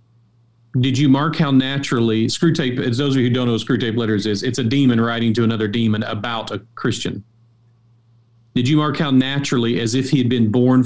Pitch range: 110-125 Hz